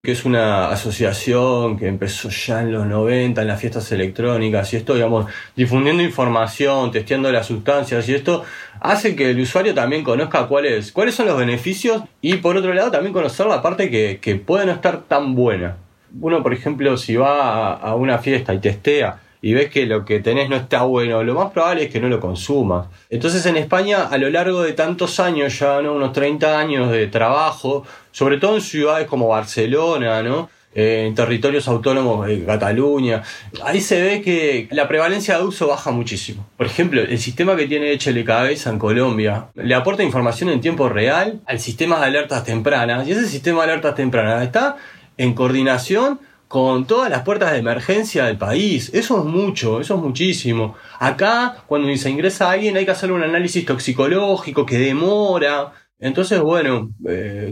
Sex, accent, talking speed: male, Argentinian, 180 wpm